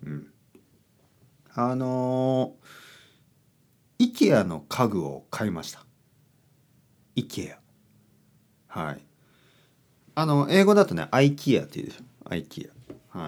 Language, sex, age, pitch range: Japanese, male, 40-59, 105-165 Hz